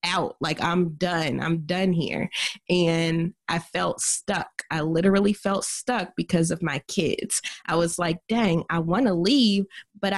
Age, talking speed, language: 20-39, 165 wpm, English